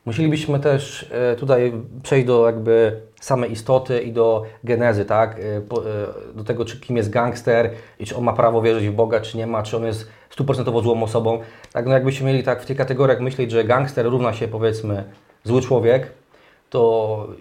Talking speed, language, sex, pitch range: 175 wpm, Polish, male, 110-125 Hz